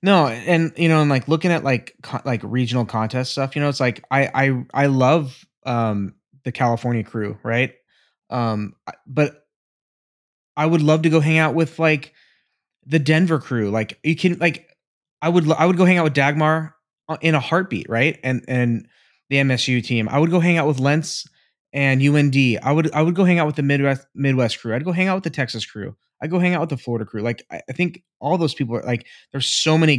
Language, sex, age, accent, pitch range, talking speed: English, male, 20-39, American, 125-170 Hz, 220 wpm